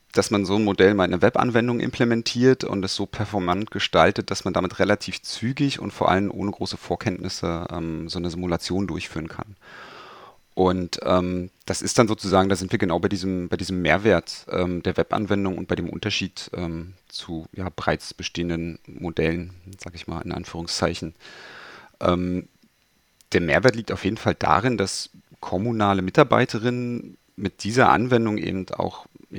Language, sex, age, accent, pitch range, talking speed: German, male, 30-49, German, 90-110 Hz, 165 wpm